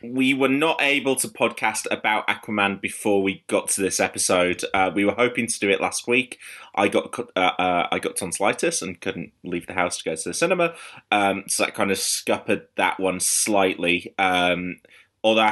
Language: English